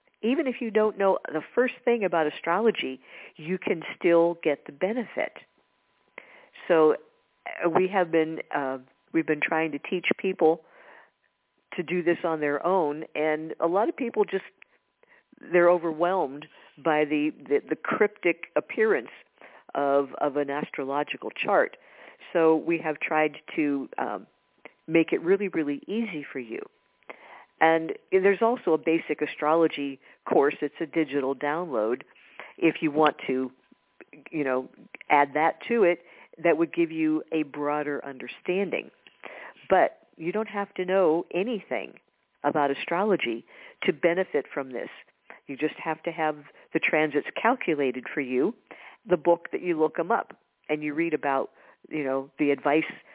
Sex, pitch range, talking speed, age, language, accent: female, 150-180 Hz, 150 wpm, 50-69, English, American